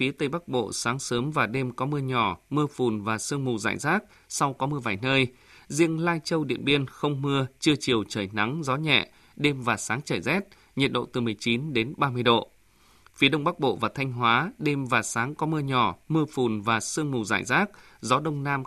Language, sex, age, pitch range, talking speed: Vietnamese, male, 20-39, 120-150 Hz, 230 wpm